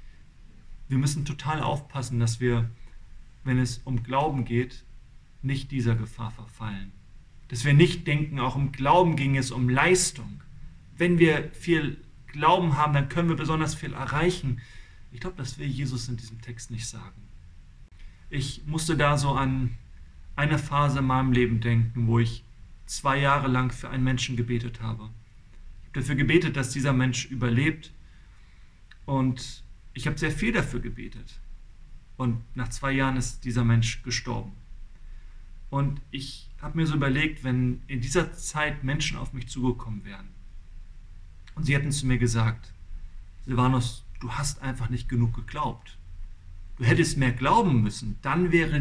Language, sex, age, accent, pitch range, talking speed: German, male, 40-59, German, 110-140 Hz, 155 wpm